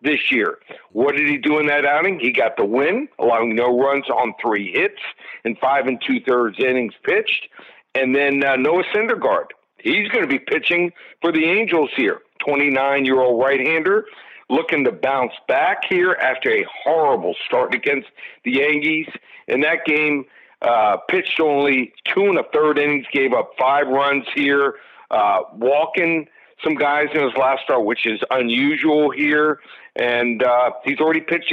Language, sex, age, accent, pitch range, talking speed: English, male, 50-69, American, 135-175 Hz, 170 wpm